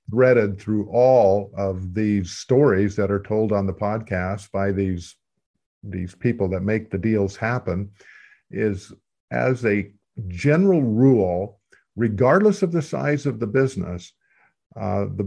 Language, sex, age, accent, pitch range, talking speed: English, male, 50-69, American, 95-115 Hz, 135 wpm